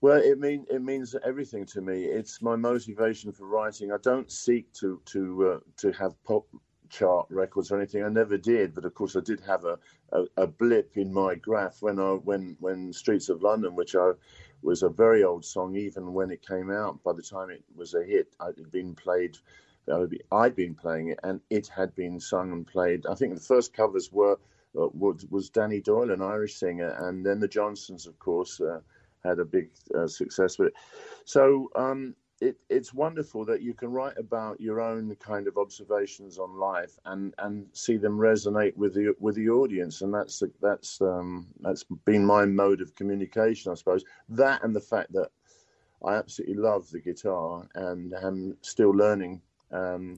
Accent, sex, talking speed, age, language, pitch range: British, male, 195 wpm, 50-69, English, 95-130 Hz